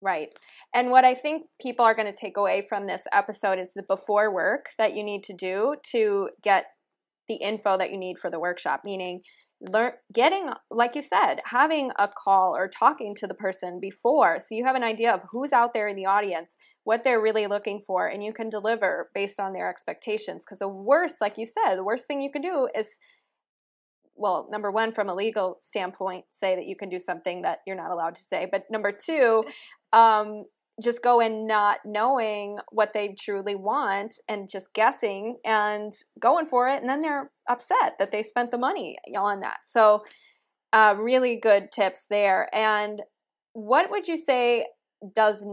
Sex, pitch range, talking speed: female, 200-245 Hz, 195 wpm